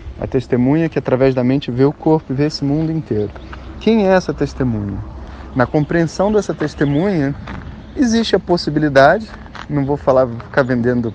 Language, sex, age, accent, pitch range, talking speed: Portuguese, male, 20-39, Brazilian, 115-155 Hz, 160 wpm